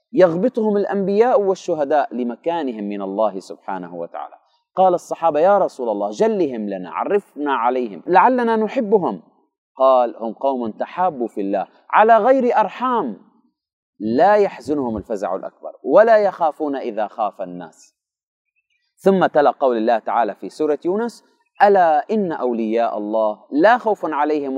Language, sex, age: Arabic, male, 30-49